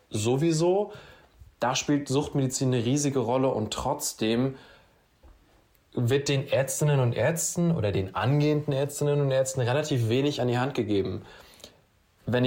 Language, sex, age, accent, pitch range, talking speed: German, male, 20-39, German, 115-145 Hz, 130 wpm